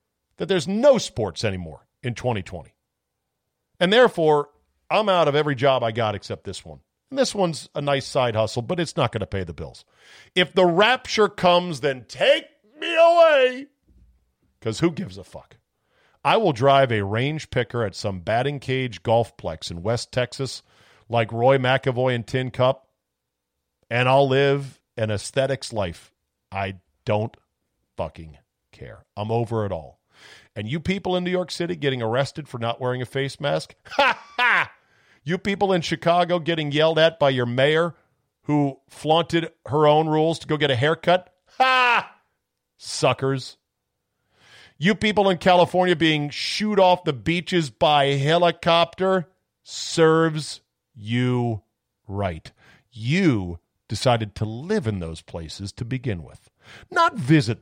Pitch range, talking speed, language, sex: 105-170 Hz, 150 wpm, English, male